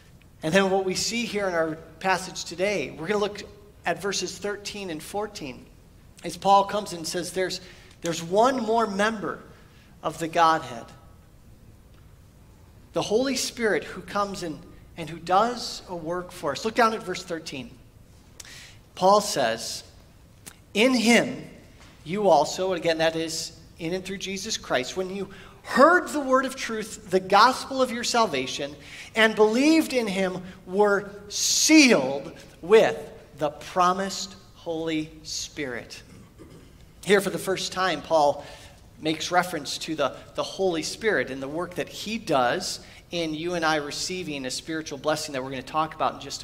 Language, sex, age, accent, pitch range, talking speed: English, male, 40-59, American, 155-210 Hz, 160 wpm